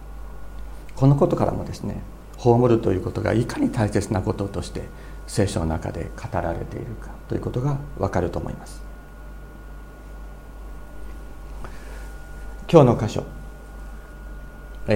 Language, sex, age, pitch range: Japanese, male, 50-69, 90-120 Hz